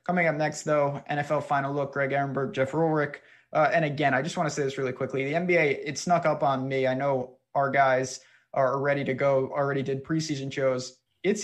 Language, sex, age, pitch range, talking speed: English, male, 20-39, 130-155 Hz, 220 wpm